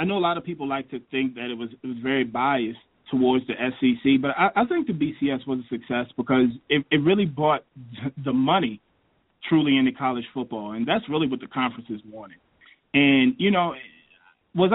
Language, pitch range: English, 125-170 Hz